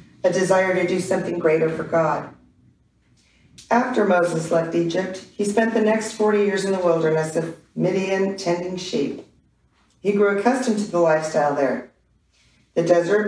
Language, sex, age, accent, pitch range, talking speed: English, female, 40-59, American, 160-200 Hz, 155 wpm